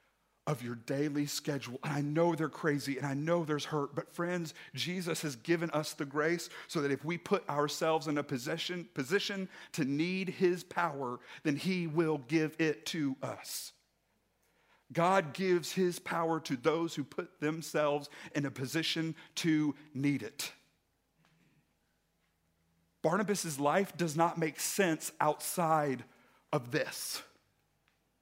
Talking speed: 145 wpm